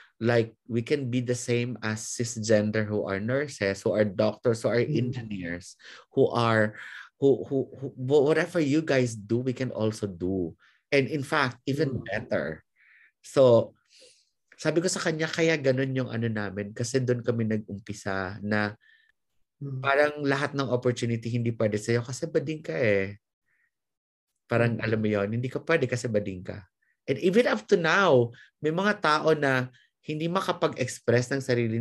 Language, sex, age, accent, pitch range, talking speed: English, male, 30-49, Filipino, 110-140 Hz, 160 wpm